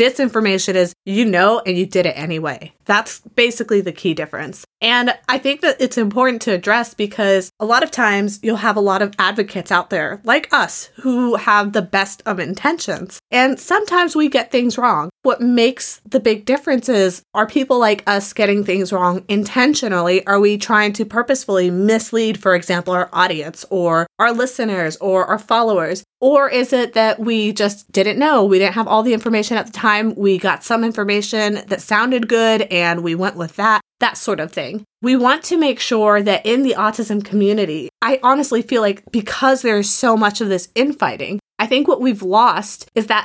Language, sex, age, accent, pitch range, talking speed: English, female, 20-39, American, 195-240 Hz, 195 wpm